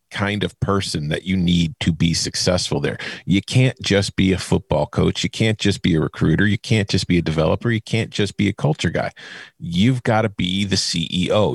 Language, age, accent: English, 40-59, American